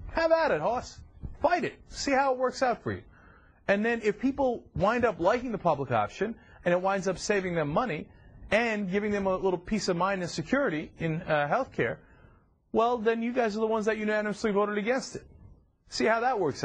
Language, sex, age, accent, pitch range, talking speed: English, male, 30-49, American, 130-185 Hz, 215 wpm